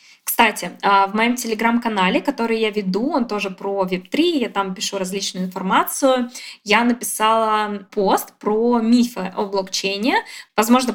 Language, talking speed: Russian, 130 wpm